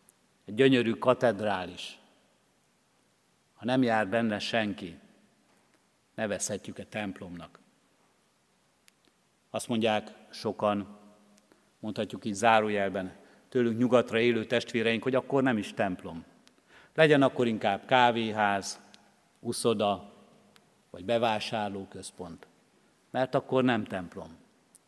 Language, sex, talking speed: Hungarian, male, 85 wpm